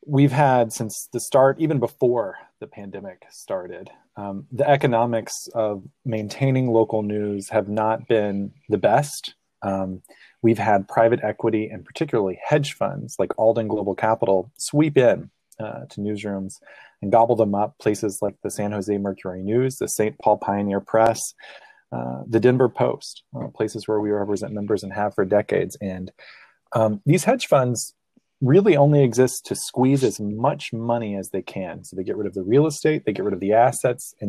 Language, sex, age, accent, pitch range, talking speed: English, male, 20-39, American, 100-120 Hz, 175 wpm